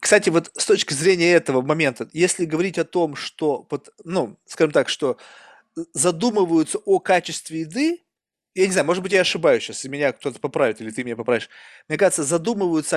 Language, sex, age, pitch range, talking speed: Russian, male, 20-39, 140-180 Hz, 175 wpm